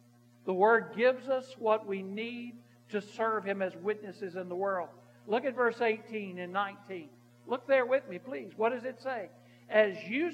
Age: 60-79